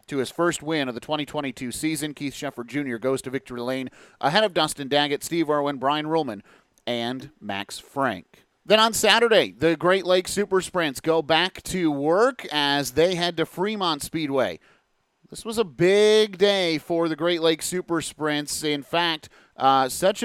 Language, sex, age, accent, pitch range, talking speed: English, male, 30-49, American, 145-180 Hz, 175 wpm